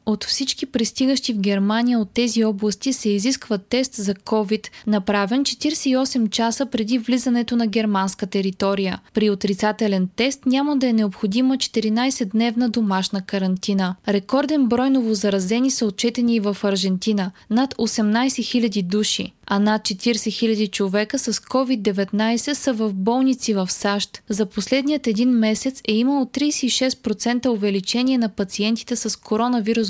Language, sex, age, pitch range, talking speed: Bulgarian, female, 20-39, 205-245 Hz, 135 wpm